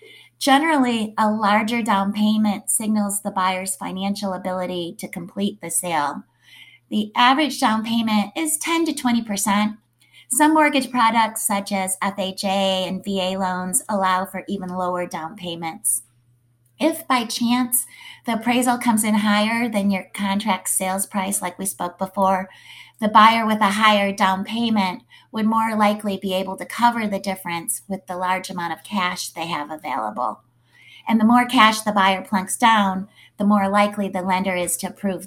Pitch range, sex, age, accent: 180-215 Hz, female, 30-49, American